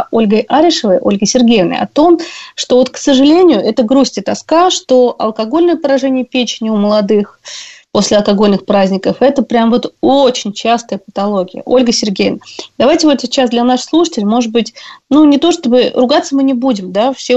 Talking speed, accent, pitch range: 175 wpm, native, 215-275 Hz